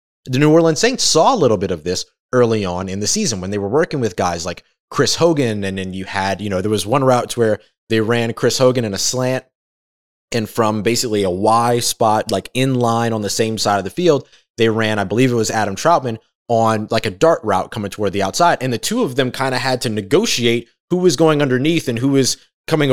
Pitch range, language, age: 100-130 Hz, English, 20-39